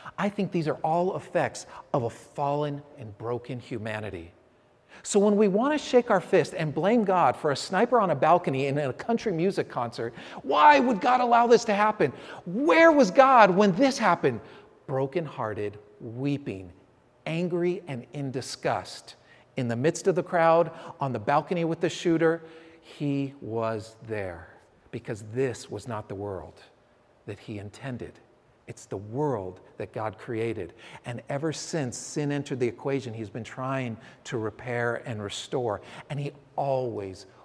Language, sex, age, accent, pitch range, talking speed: English, male, 40-59, American, 120-170 Hz, 160 wpm